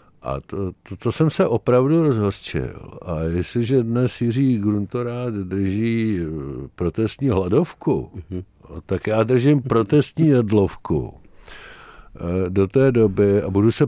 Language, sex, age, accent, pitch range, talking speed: Czech, male, 50-69, native, 100-130 Hz, 115 wpm